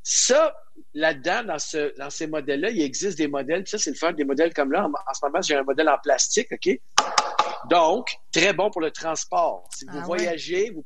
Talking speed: 215 wpm